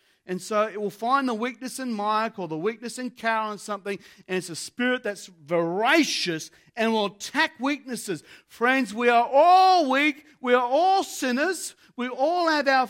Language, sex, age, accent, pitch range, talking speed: English, male, 40-59, Australian, 220-305 Hz, 180 wpm